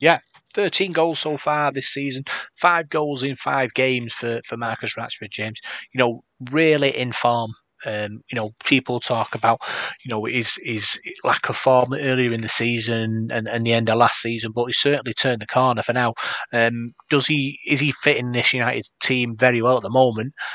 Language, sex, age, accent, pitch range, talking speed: English, male, 30-49, British, 115-135 Hz, 200 wpm